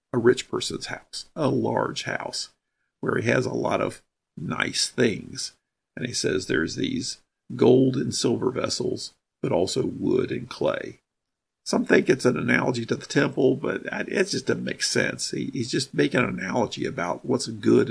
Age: 50-69